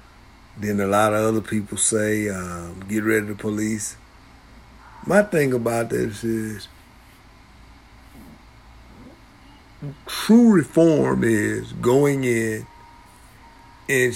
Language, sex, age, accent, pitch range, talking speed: English, male, 50-69, American, 105-145 Hz, 95 wpm